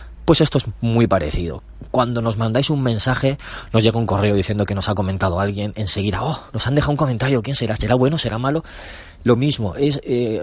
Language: Spanish